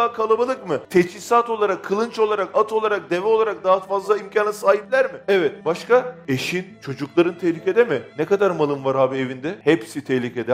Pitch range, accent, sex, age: 140-185 Hz, native, male, 40-59